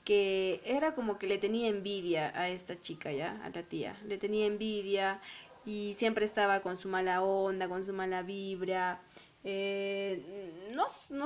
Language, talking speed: Spanish, 160 wpm